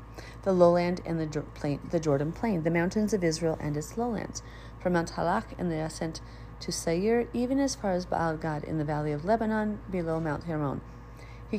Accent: American